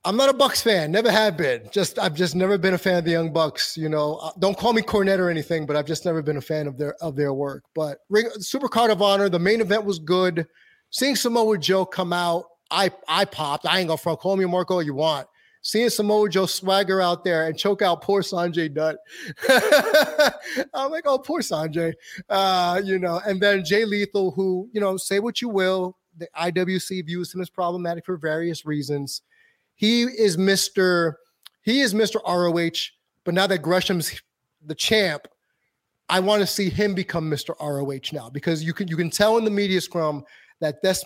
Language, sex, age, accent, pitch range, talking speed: English, male, 30-49, American, 165-200 Hz, 205 wpm